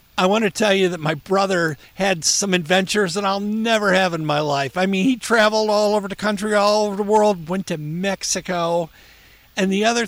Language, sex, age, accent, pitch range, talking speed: English, male, 50-69, American, 160-200 Hz, 215 wpm